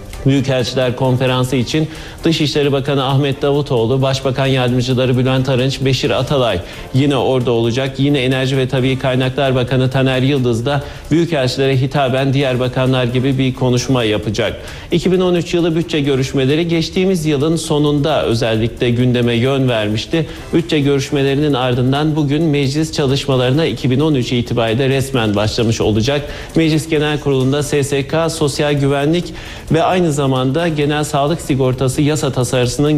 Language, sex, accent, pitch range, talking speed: Turkish, male, native, 125-150 Hz, 125 wpm